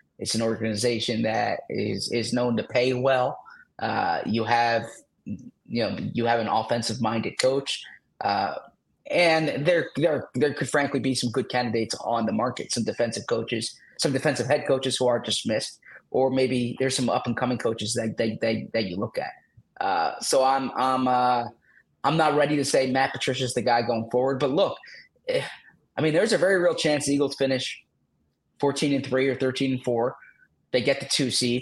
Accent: American